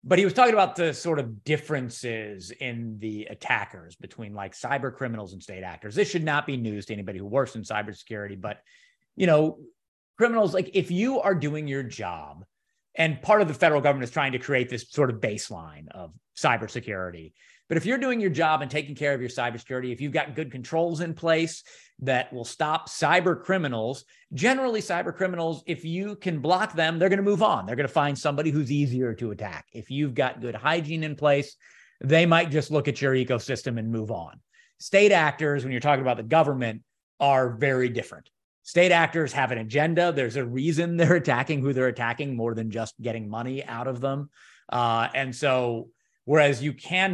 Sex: male